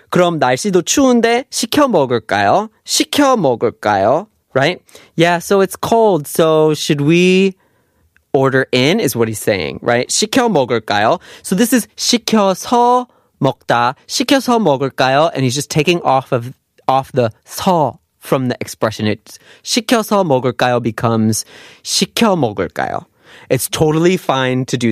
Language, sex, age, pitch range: Korean, male, 30-49, 125-195 Hz